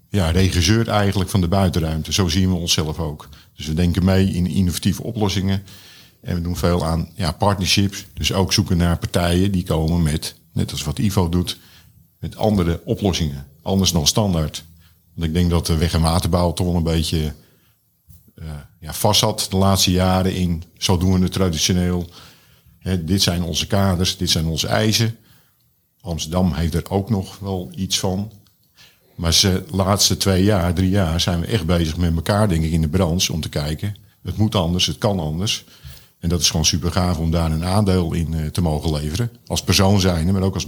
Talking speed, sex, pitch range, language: 190 wpm, male, 85-100 Hz, Dutch